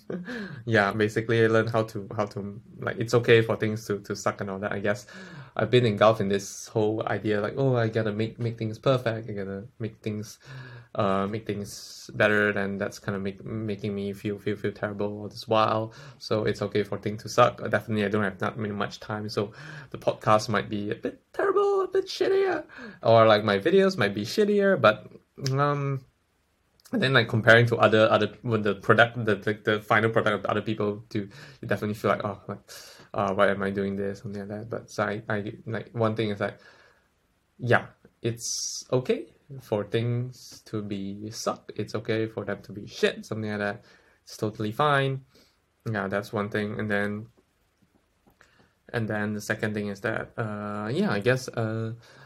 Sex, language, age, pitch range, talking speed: male, English, 20-39, 105-120 Hz, 200 wpm